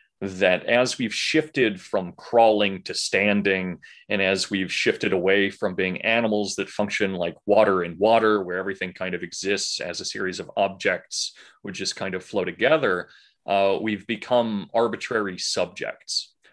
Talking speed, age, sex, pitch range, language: 155 wpm, 30-49, male, 95-120 Hz, English